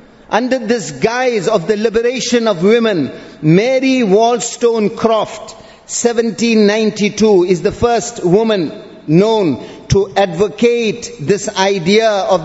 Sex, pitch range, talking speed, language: male, 195-235 Hz, 105 wpm, English